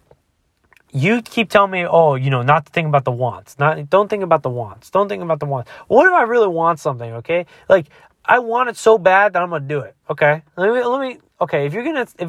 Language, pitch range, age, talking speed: English, 110-170 Hz, 20-39, 245 wpm